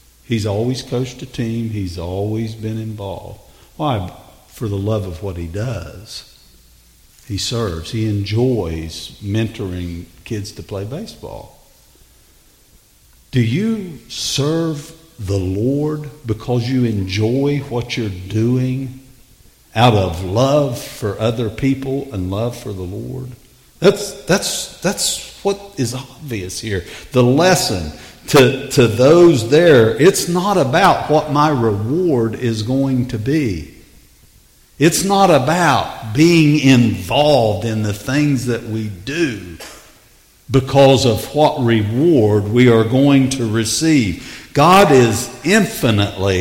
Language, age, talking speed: English, 50-69, 120 wpm